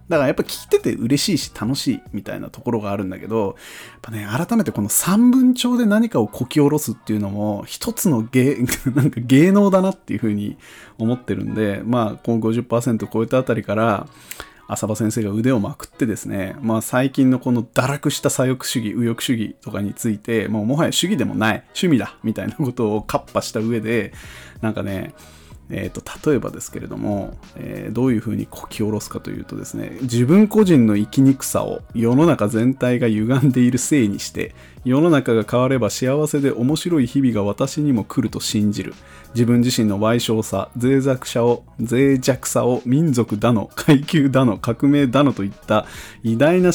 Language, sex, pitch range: Japanese, male, 110-135 Hz